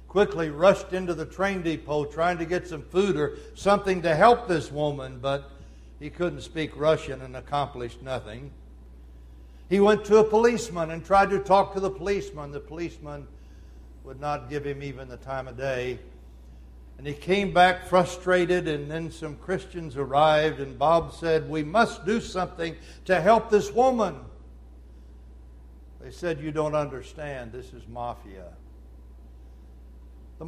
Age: 60-79